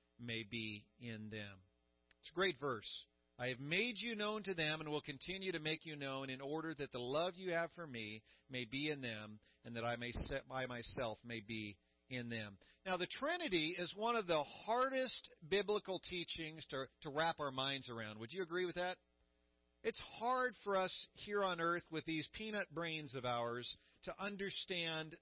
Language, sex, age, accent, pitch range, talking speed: English, male, 40-59, American, 120-190 Hz, 195 wpm